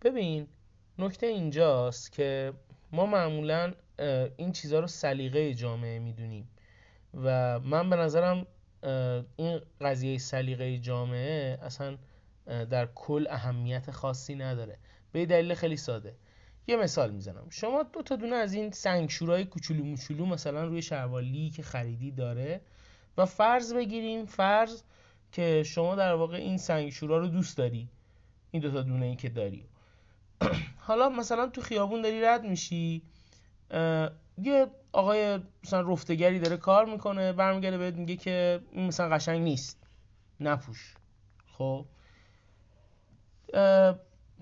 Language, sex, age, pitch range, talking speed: Persian, male, 30-49, 125-185 Hz, 125 wpm